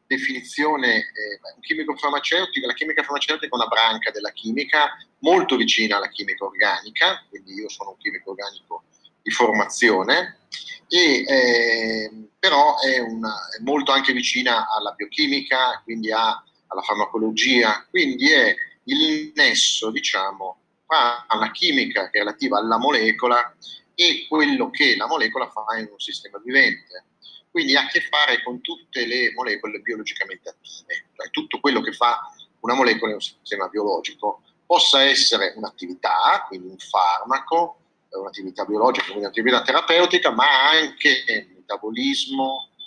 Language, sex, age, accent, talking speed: Italian, male, 40-59, native, 135 wpm